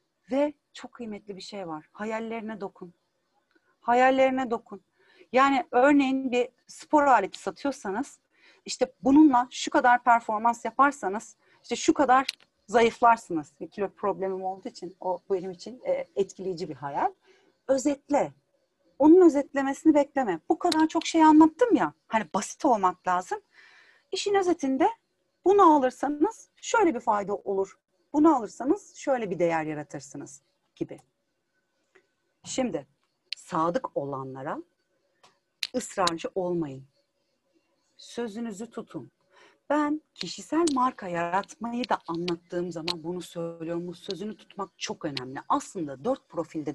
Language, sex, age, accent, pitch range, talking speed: Turkish, female, 40-59, native, 185-285 Hz, 115 wpm